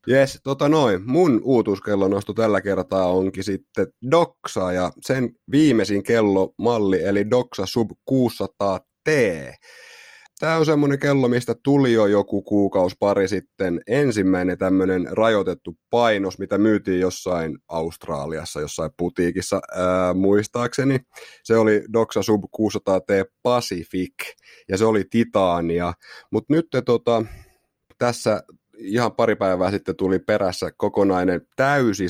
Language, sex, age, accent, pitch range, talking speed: Finnish, male, 30-49, native, 95-120 Hz, 120 wpm